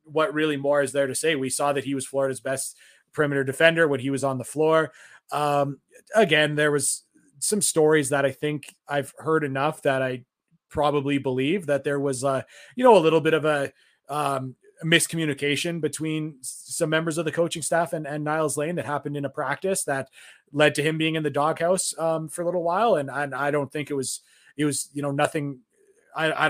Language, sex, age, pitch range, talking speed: English, male, 20-39, 140-160 Hz, 215 wpm